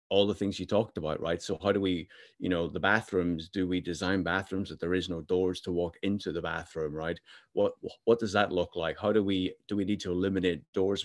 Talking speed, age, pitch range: 245 wpm, 30-49, 85-100 Hz